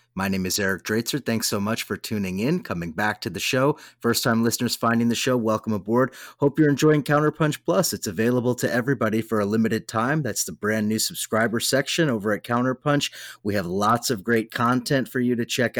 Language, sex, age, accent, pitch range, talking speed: English, male, 30-49, American, 110-135 Hz, 215 wpm